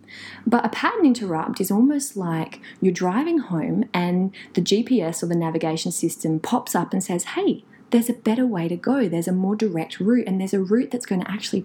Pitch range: 175-245 Hz